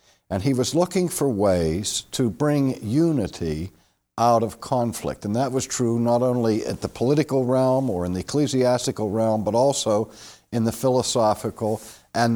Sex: male